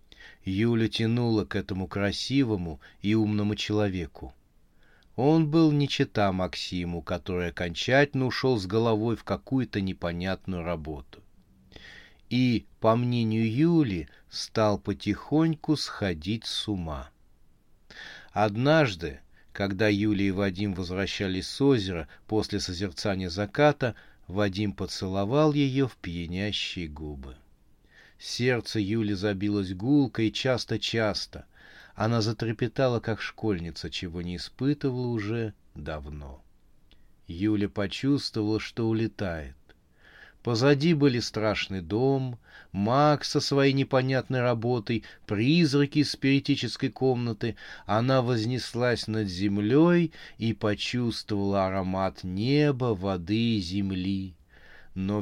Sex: male